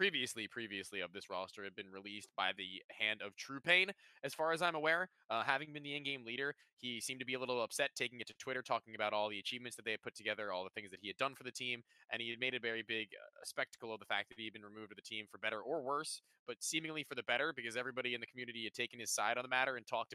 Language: English